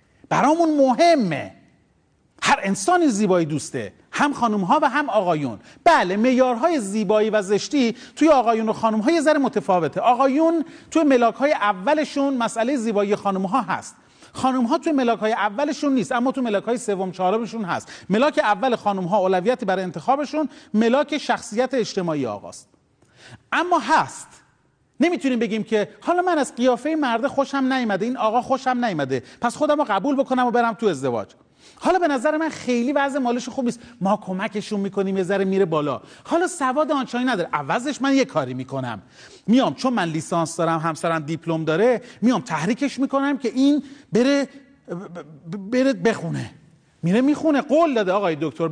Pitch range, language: 190-275 Hz, Persian